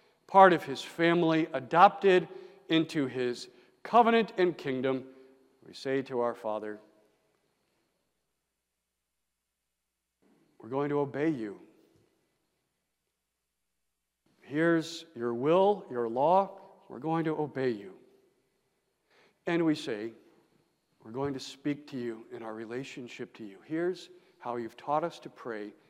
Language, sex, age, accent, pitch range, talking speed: English, male, 50-69, American, 120-185 Hz, 120 wpm